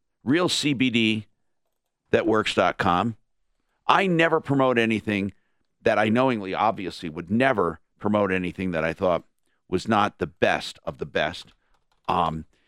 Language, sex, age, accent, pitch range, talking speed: English, male, 50-69, American, 95-120 Hz, 115 wpm